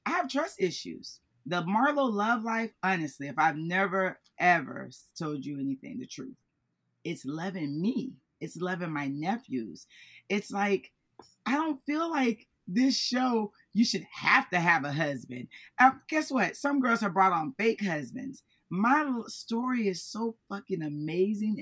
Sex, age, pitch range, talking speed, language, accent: female, 30-49, 165-230 Hz, 155 wpm, English, American